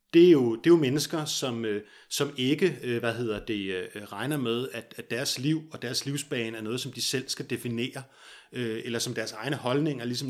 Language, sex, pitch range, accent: Danish, male, 115-140 Hz, native